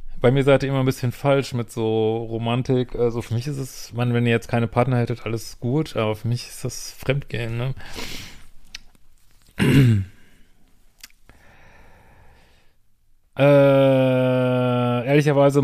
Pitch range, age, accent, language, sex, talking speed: 110-135 Hz, 30-49, German, German, male, 130 wpm